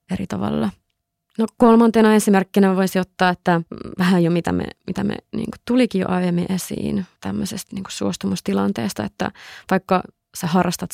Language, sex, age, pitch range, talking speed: Finnish, female, 20-39, 175-200 Hz, 145 wpm